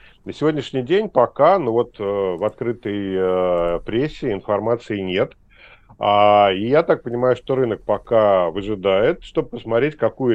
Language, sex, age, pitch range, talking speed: Russian, male, 40-59, 105-135 Hz, 130 wpm